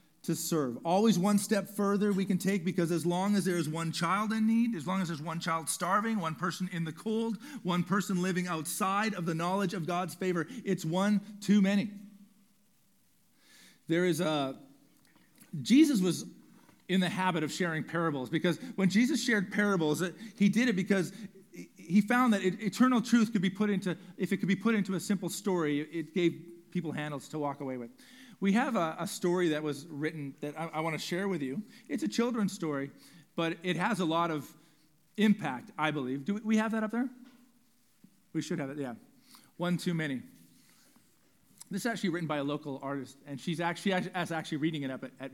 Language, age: English, 40-59